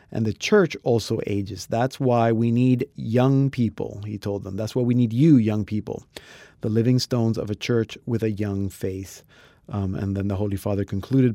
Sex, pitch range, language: male, 100-120 Hz, English